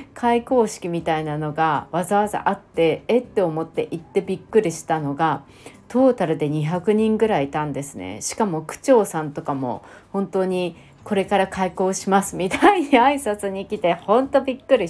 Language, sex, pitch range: Japanese, female, 160-220 Hz